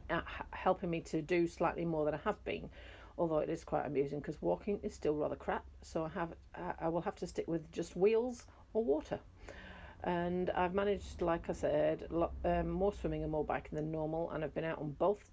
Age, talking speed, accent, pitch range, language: 40-59, 220 wpm, British, 155-185 Hz, English